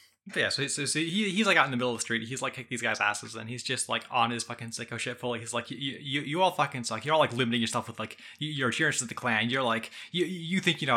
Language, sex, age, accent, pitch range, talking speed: English, male, 20-39, American, 120-155 Hz, 330 wpm